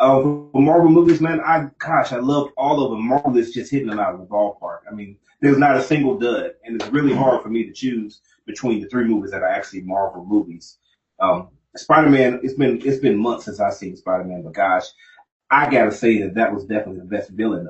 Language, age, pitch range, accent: English, 30-49, 105-140 Hz, American